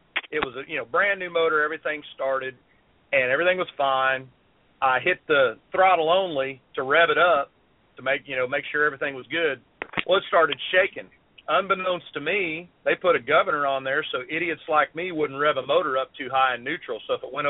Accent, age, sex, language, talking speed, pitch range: American, 40-59, male, English, 215 wpm, 130-170 Hz